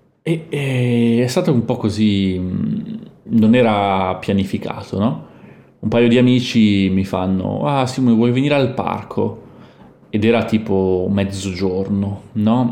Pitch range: 95-115 Hz